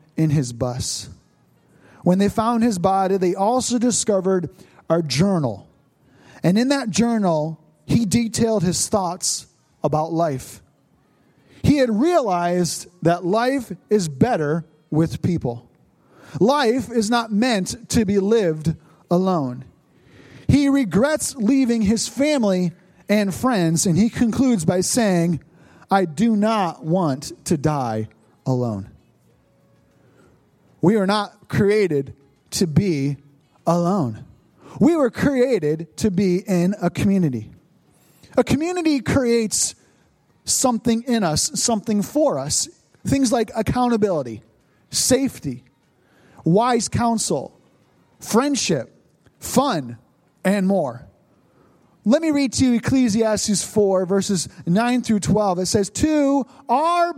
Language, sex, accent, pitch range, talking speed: English, male, American, 160-230 Hz, 115 wpm